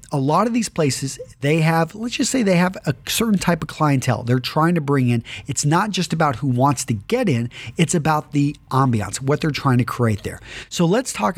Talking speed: 230 wpm